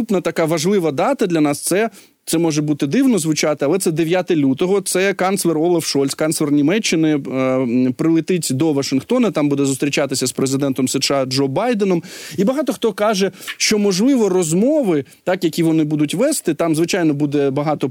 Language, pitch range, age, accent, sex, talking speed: Ukrainian, 145-195 Hz, 20-39, native, male, 165 wpm